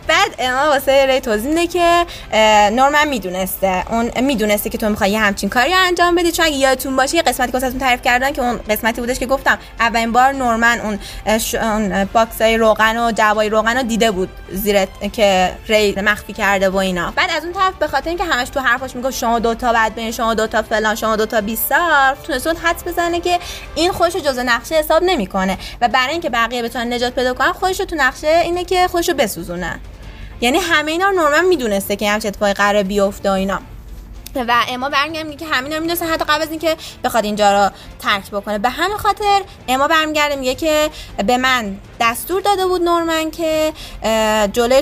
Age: 20-39